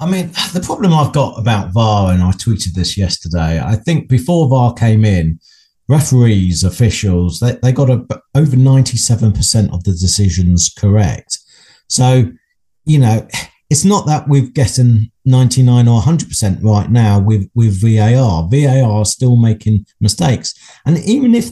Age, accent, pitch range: 50-69, British, 105-140 Hz